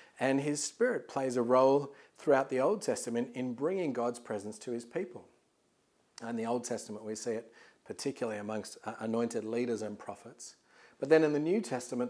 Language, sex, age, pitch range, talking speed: English, male, 40-59, 115-140 Hz, 180 wpm